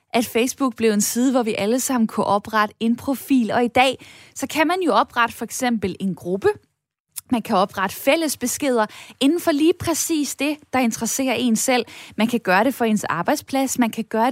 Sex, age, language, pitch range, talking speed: female, 20-39, Danish, 225-280 Hz, 205 wpm